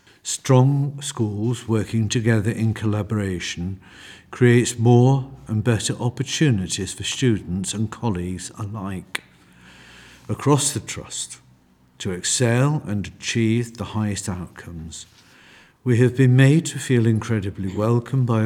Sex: male